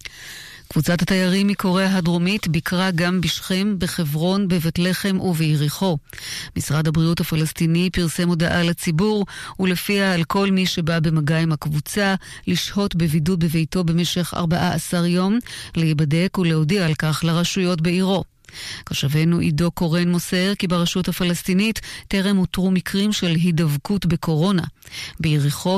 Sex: female